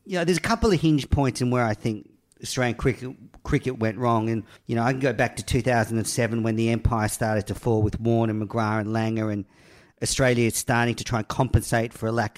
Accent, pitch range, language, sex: Australian, 115-150 Hz, English, male